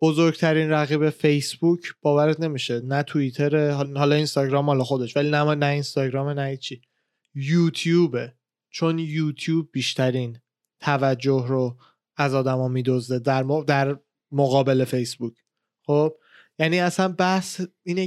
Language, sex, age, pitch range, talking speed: Persian, male, 20-39, 140-180 Hz, 115 wpm